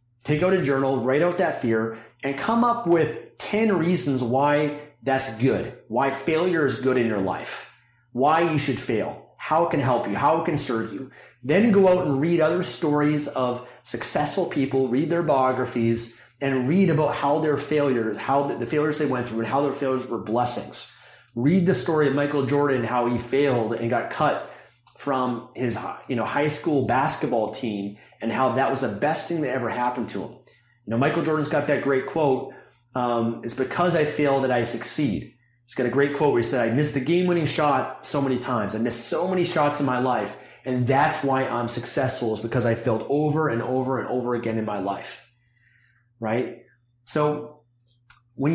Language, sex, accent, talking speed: English, male, American, 200 wpm